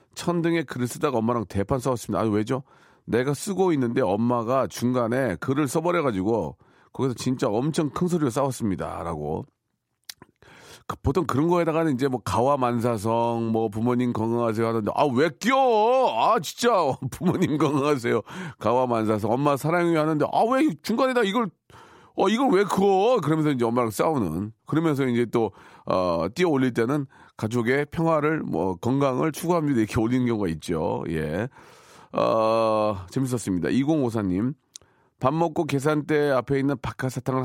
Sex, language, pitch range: male, Korean, 115-165 Hz